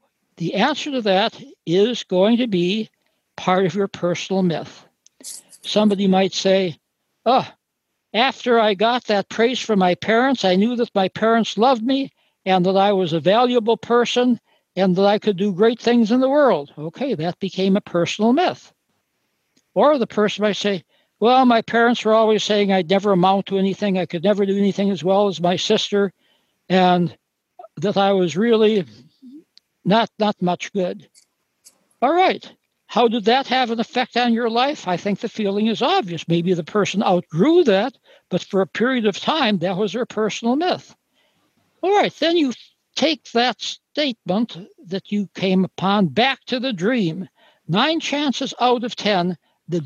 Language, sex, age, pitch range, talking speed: English, male, 60-79, 190-240 Hz, 175 wpm